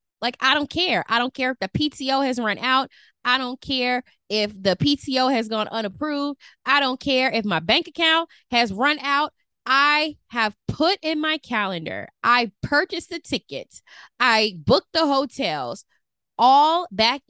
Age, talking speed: 20-39, 165 wpm